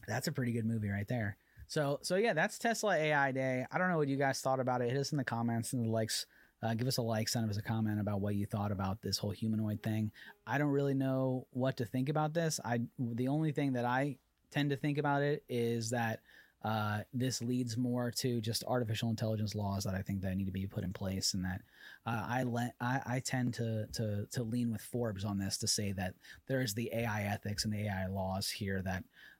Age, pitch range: 30-49, 100-130 Hz